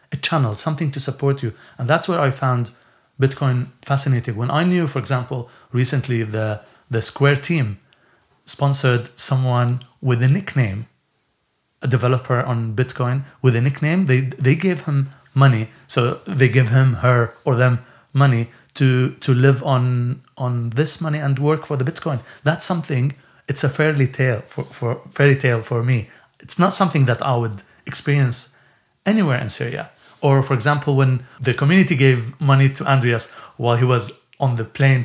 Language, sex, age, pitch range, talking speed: English, male, 30-49, 125-145 Hz, 170 wpm